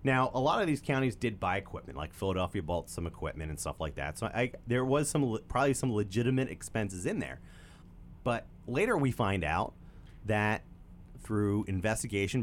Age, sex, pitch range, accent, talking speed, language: 30-49, male, 90-125 Hz, American, 190 wpm, English